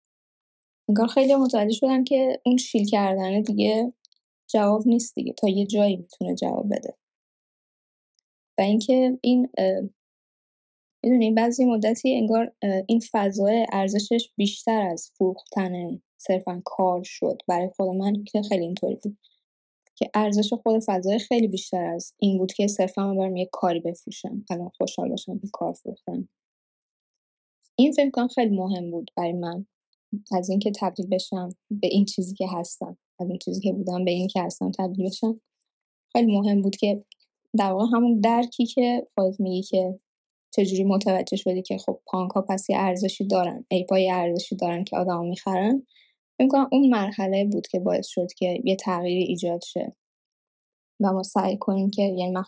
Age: 10-29